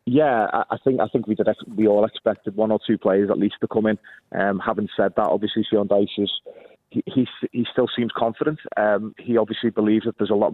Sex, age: male, 30-49